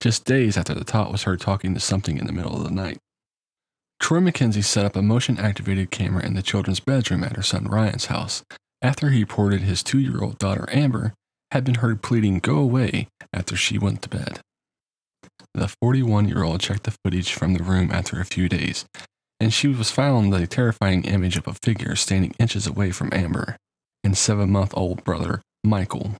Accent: American